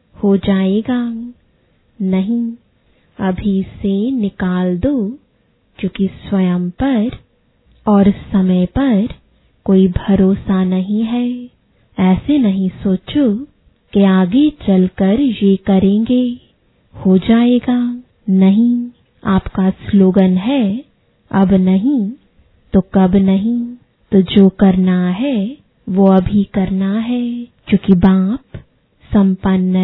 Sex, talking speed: female, 95 wpm